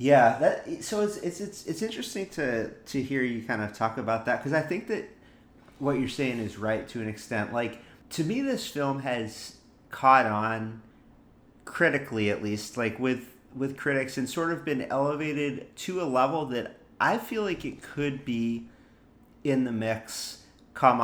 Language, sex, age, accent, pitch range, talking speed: English, male, 30-49, American, 110-140 Hz, 180 wpm